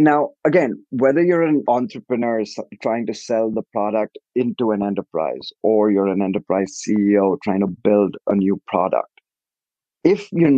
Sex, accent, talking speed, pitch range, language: male, Indian, 155 wpm, 105-140 Hz, English